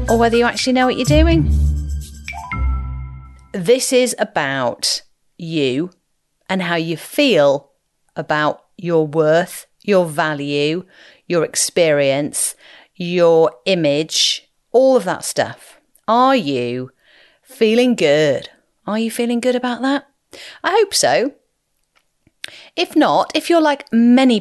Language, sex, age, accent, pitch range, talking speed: English, female, 40-59, British, 155-240 Hz, 120 wpm